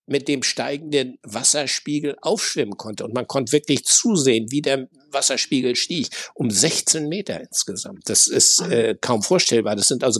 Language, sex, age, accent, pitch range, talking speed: German, male, 60-79, German, 120-145 Hz, 160 wpm